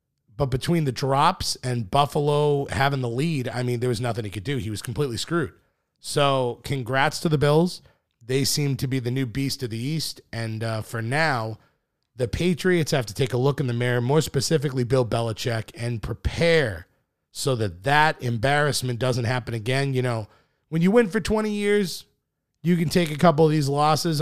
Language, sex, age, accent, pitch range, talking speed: English, male, 30-49, American, 115-145 Hz, 195 wpm